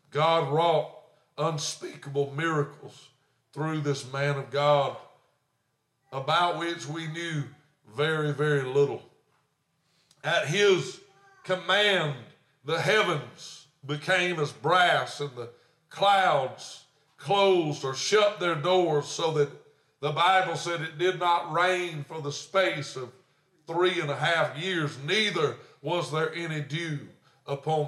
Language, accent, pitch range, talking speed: English, American, 145-175 Hz, 120 wpm